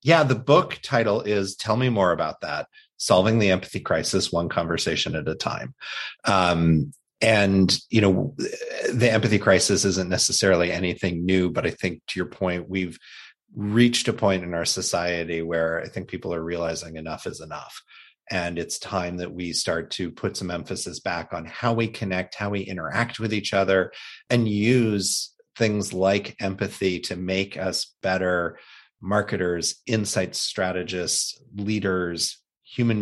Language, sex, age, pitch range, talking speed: English, male, 30-49, 90-110 Hz, 160 wpm